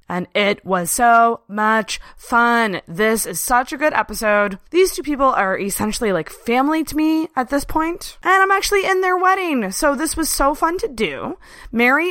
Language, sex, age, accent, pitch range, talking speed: English, female, 20-39, American, 205-290 Hz, 190 wpm